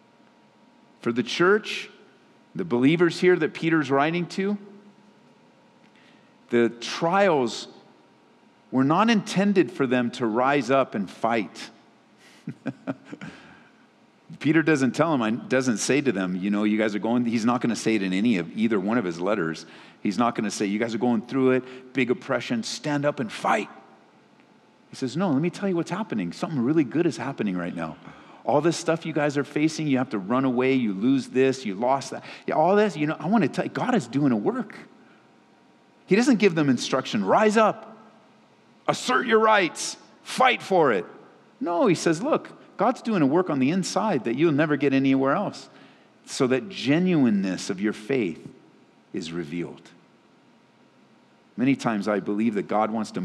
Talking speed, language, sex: 180 wpm, English, male